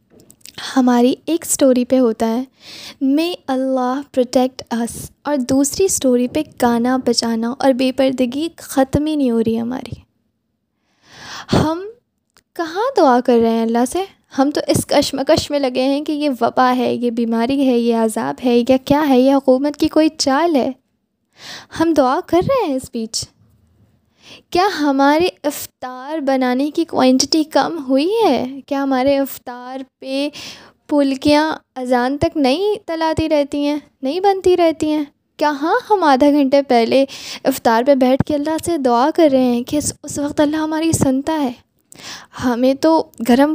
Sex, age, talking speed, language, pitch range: female, 10-29, 160 wpm, Urdu, 255-315 Hz